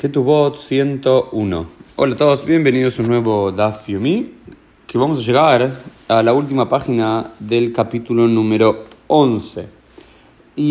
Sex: male